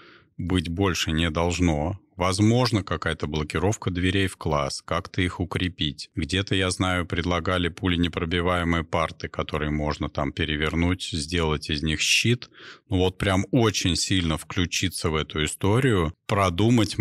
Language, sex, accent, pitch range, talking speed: Russian, male, native, 80-100 Hz, 135 wpm